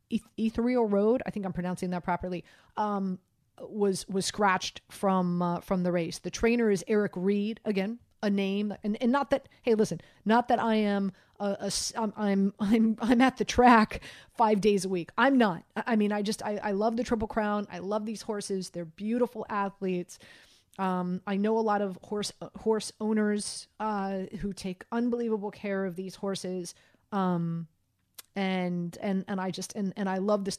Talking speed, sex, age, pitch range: 190 wpm, female, 30-49, 190-220 Hz